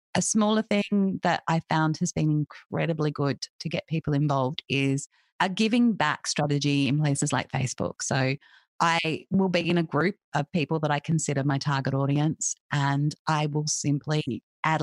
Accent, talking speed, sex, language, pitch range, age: Australian, 175 wpm, female, English, 140-170 Hz, 30-49